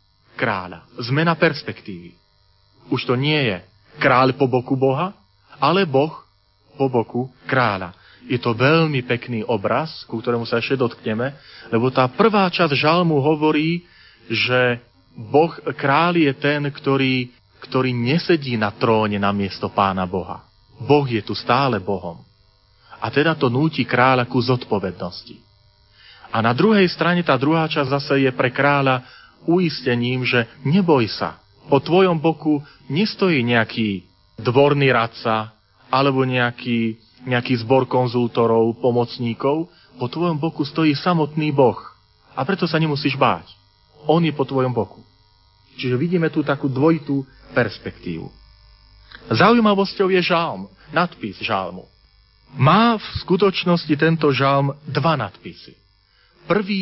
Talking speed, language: 125 wpm, Slovak